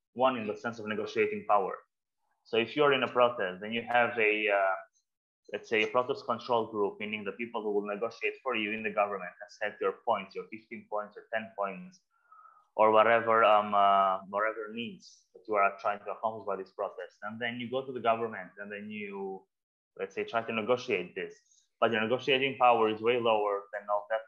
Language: English